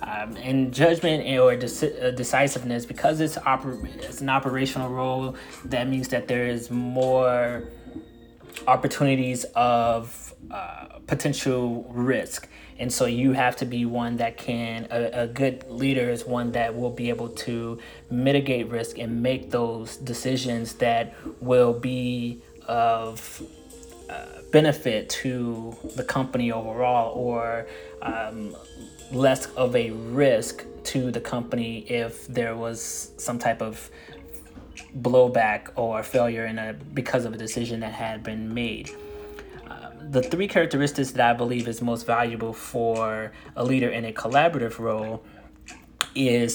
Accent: American